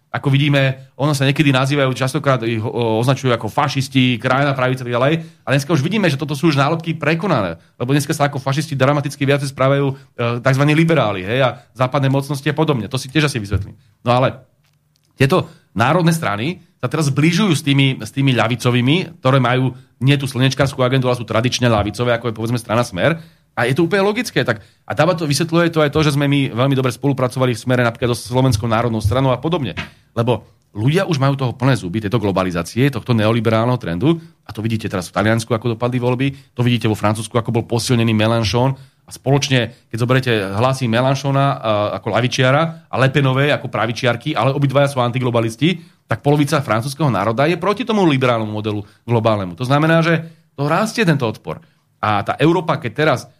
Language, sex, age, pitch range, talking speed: Slovak, male, 30-49, 120-145 Hz, 195 wpm